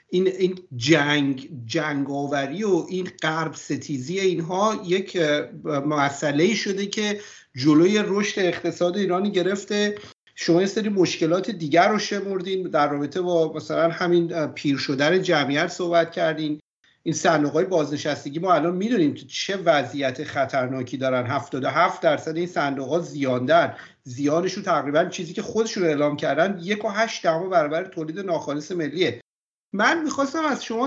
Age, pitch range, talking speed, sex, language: 50-69, 160-210 Hz, 135 wpm, male, Persian